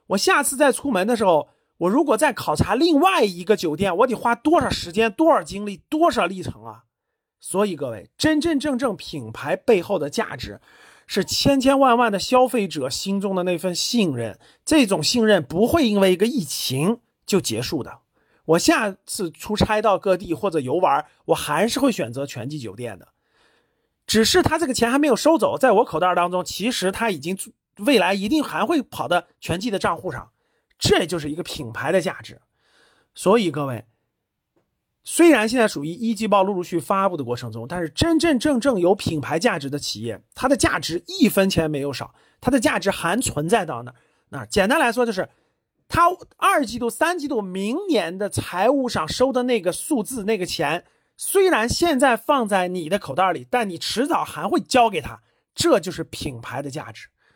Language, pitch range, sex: Chinese, 170-275 Hz, male